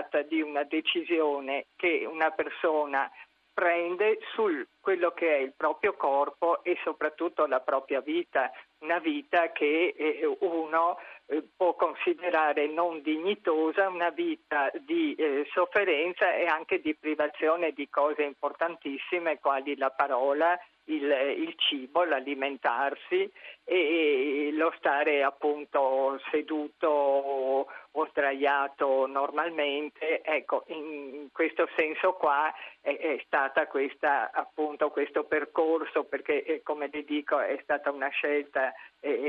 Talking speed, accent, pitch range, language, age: 105 wpm, native, 140-170 Hz, Italian, 50-69